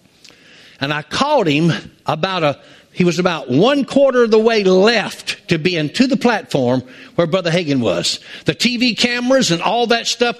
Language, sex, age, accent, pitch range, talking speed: English, male, 60-79, American, 180-240 Hz, 180 wpm